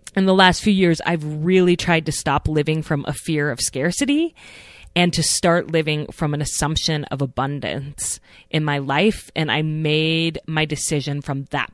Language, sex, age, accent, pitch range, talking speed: English, female, 20-39, American, 145-175 Hz, 180 wpm